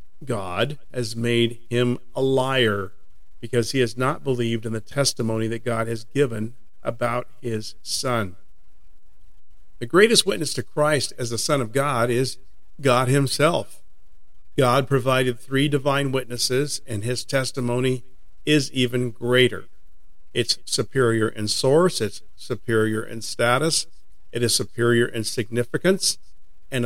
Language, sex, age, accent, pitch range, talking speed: English, male, 50-69, American, 115-140 Hz, 130 wpm